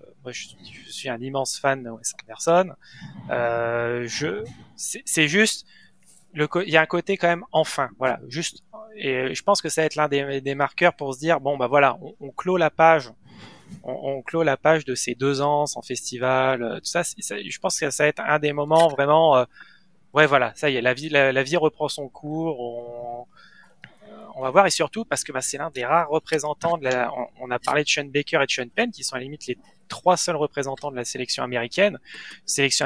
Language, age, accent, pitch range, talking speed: French, 30-49, French, 125-165 Hz, 225 wpm